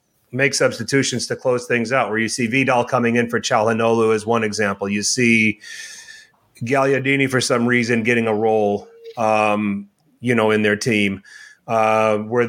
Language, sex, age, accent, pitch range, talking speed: English, male, 30-49, American, 115-130 Hz, 165 wpm